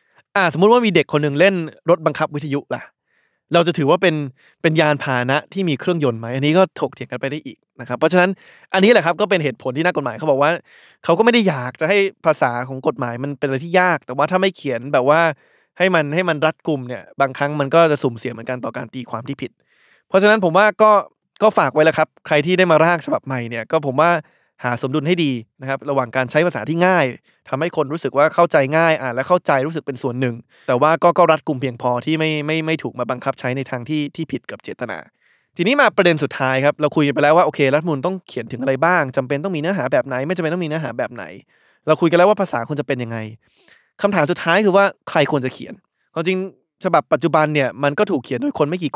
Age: 20-39